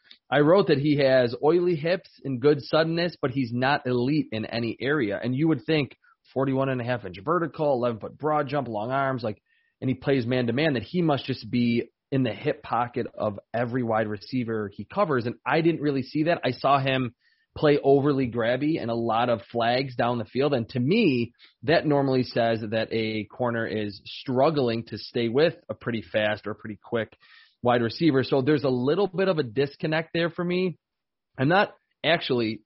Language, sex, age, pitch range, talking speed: English, male, 30-49, 120-150 Hz, 205 wpm